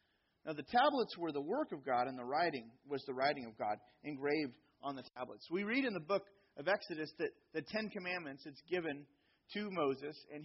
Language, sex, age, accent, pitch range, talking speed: English, male, 30-49, American, 150-200 Hz, 205 wpm